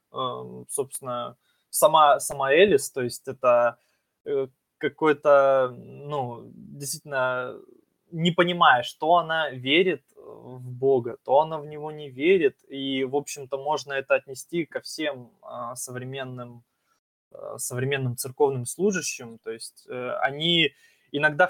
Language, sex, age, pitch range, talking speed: Russian, male, 20-39, 125-155 Hz, 110 wpm